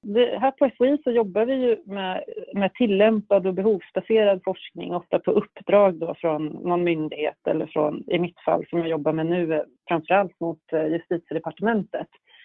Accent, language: native, Swedish